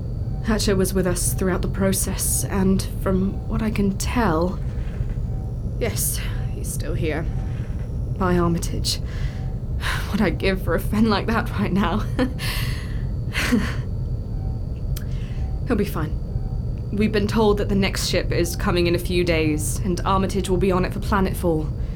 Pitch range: 110-140 Hz